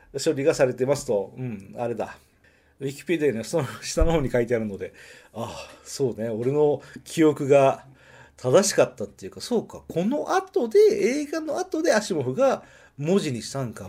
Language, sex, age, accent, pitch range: Japanese, male, 40-59, native, 130-190 Hz